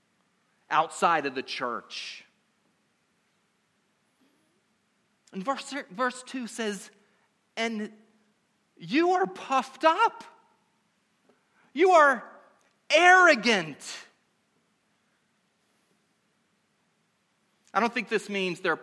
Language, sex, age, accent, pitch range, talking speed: English, male, 40-59, American, 200-270 Hz, 75 wpm